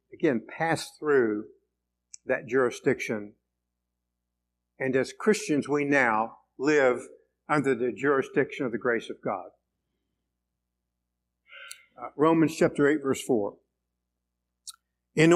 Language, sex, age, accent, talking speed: English, male, 60-79, American, 100 wpm